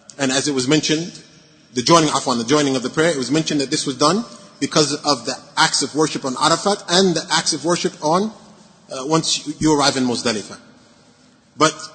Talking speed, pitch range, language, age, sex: 205 wpm, 140-170 Hz, English, 30-49, male